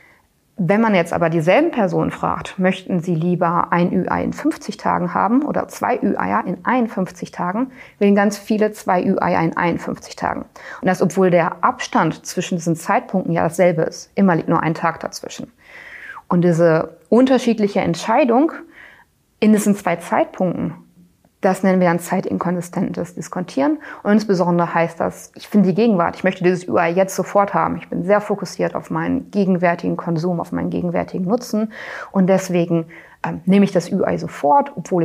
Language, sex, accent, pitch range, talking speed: German, female, German, 175-215 Hz, 165 wpm